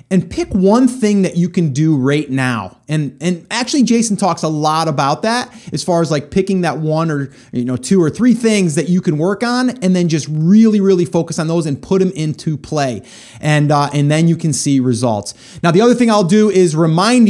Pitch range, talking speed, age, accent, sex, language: 155-205 Hz, 230 wpm, 30-49, American, male, English